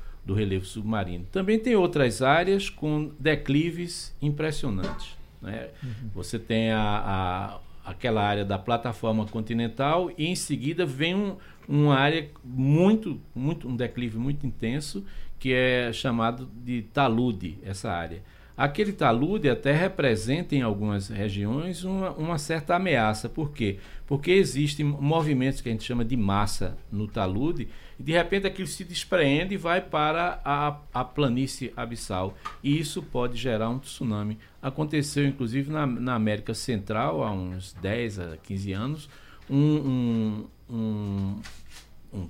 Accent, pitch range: Brazilian, 110-150 Hz